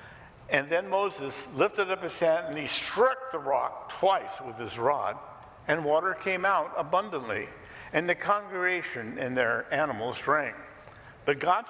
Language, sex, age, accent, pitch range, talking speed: English, male, 50-69, American, 130-180 Hz, 155 wpm